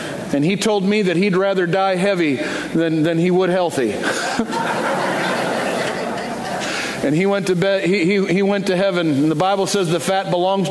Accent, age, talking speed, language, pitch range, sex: American, 50-69, 180 wpm, English, 175-215 Hz, male